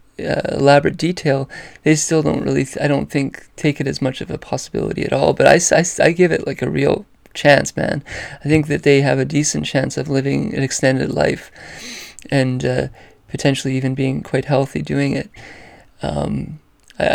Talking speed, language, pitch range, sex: 195 wpm, English, 135-150 Hz, male